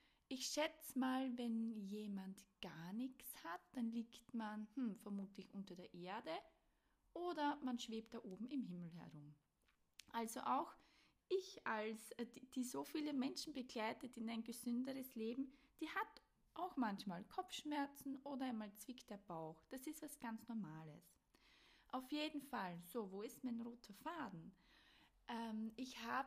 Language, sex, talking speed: German, female, 140 wpm